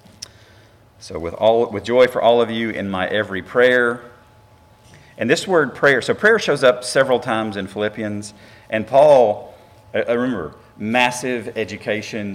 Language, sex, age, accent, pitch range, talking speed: English, male, 40-59, American, 100-120 Hz, 150 wpm